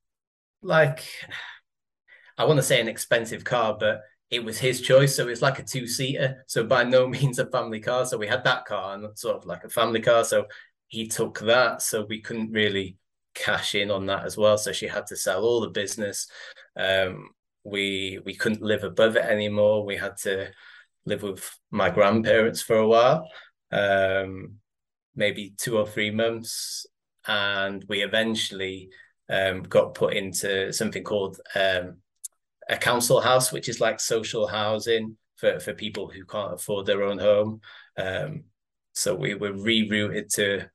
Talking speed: 170 wpm